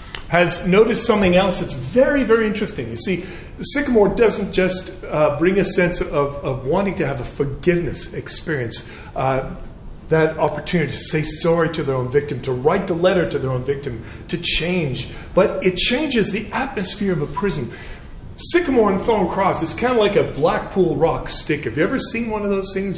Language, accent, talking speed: English, American, 190 wpm